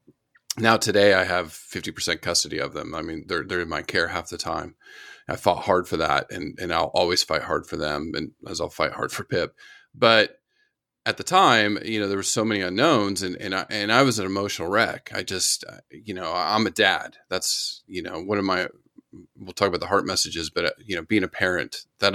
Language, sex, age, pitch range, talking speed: English, male, 30-49, 95-130 Hz, 225 wpm